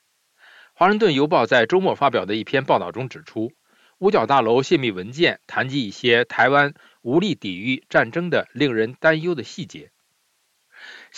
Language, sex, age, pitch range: Chinese, male, 50-69, 120-180 Hz